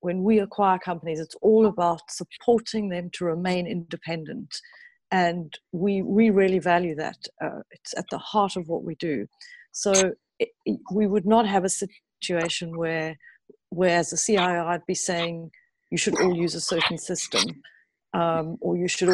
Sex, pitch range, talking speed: female, 170-195 Hz, 170 wpm